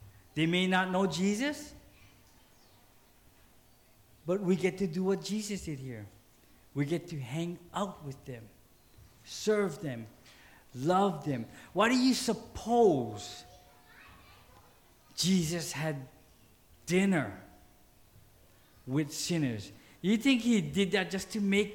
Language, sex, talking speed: English, male, 115 wpm